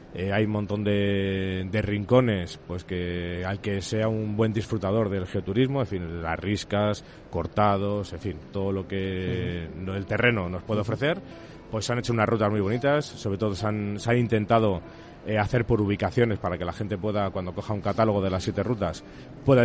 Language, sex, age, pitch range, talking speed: Spanish, male, 30-49, 95-120 Hz, 200 wpm